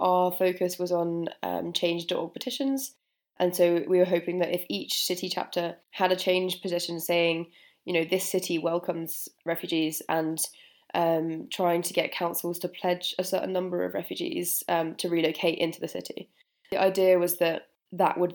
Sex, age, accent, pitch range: female, 20-39, British, 170-190 Hz